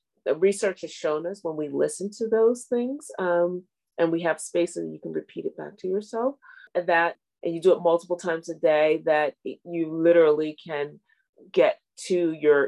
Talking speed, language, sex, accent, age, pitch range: 195 wpm, English, female, American, 30-49, 150-195 Hz